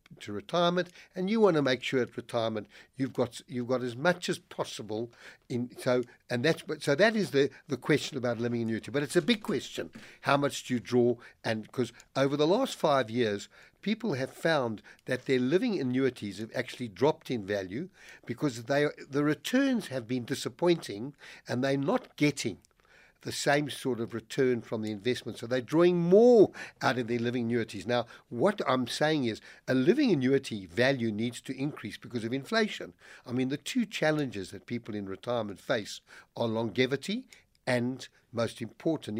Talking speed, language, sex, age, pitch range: 180 wpm, English, male, 60-79, 120-150 Hz